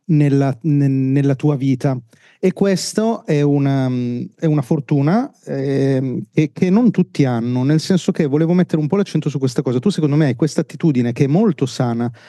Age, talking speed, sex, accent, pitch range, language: 30-49, 180 wpm, male, native, 135-160 Hz, Italian